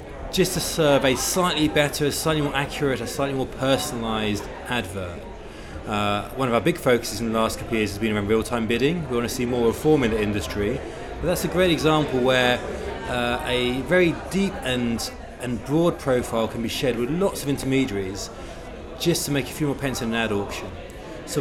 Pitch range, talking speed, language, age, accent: 110-140 Hz, 205 wpm, English, 30-49, British